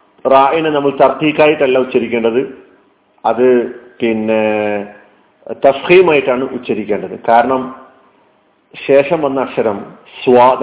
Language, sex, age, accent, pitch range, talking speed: Malayalam, male, 40-59, native, 120-150 Hz, 75 wpm